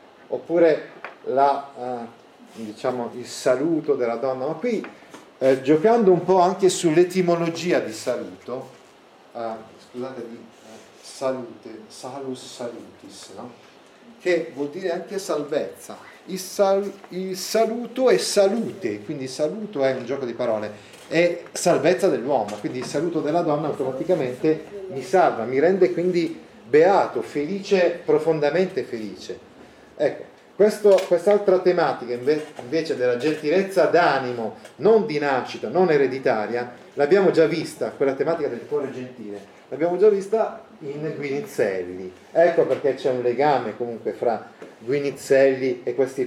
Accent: native